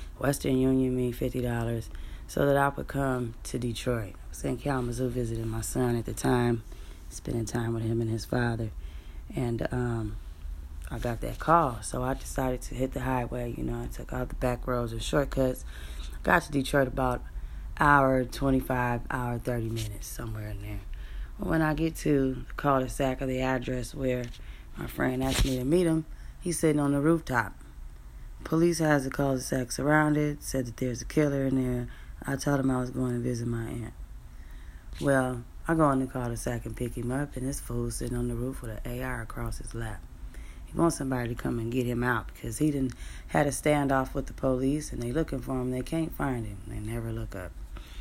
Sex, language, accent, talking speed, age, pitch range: female, English, American, 205 wpm, 30-49, 115-135 Hz